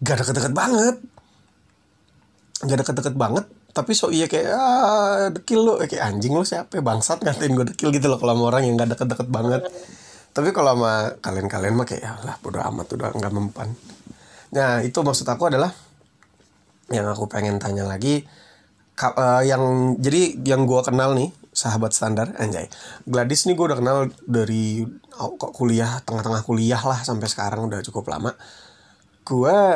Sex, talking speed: male, 155 wpm